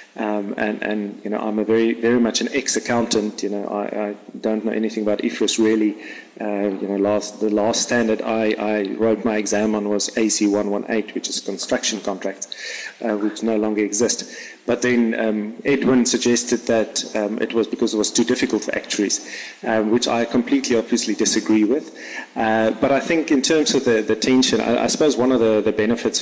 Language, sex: English, male